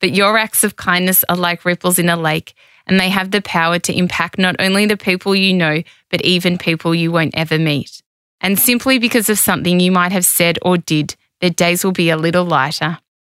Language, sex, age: English, female, 20-39